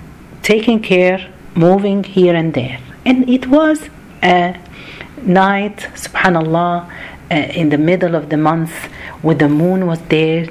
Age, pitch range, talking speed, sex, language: 50-69, 165-220 Hz, 135 wpm, female, Arabic